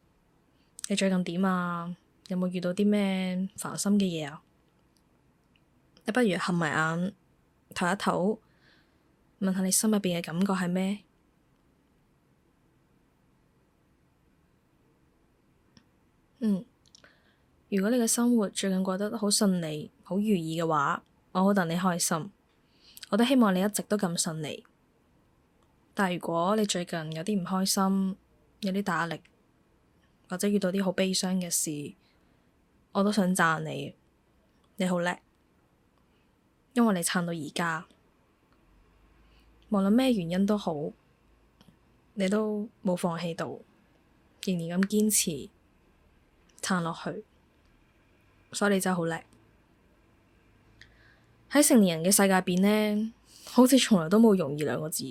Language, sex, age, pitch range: Chinese, female, 10-29, 170-210 Hz